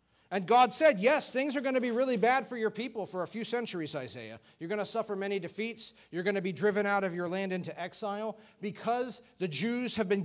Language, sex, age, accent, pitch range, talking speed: English, male, 40-59, American, 165-225 Hz, 240 wpm